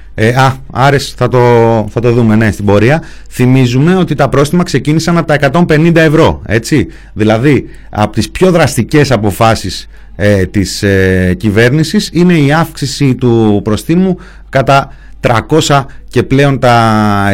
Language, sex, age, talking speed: Greek, male, 30-49, 145 wpm